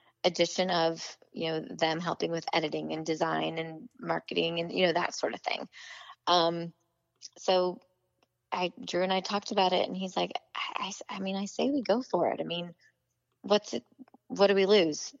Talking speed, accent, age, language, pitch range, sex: 195 wpm, American, 20-39, English, 160-200 Hz, female